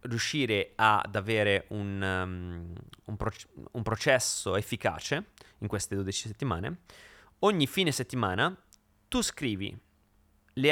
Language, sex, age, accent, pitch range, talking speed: Italian, male, 30-49, native, 100-135 Hz, 110 wpm